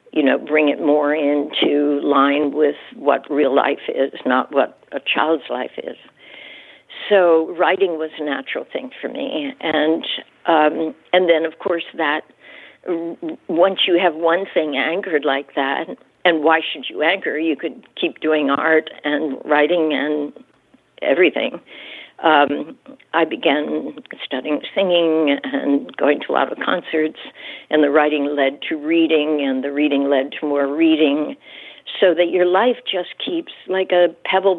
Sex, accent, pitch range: female, American, 150-175 Hz